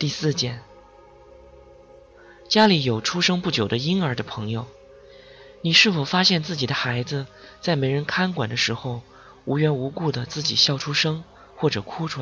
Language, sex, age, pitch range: Chinese, male, 20-39, 115-150 Hz